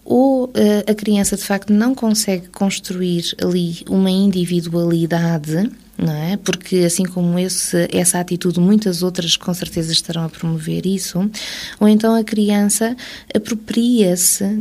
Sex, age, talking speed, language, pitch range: female, 20-39, 130 wpm, Portuguese, 175-210 Hz